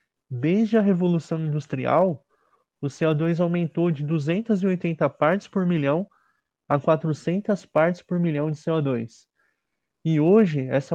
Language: Portuguese